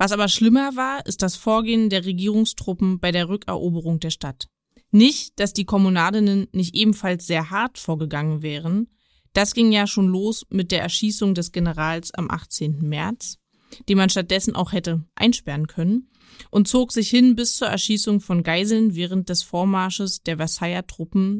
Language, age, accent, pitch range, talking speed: German, 20-39, German, 180-220 Hz, 165 wpm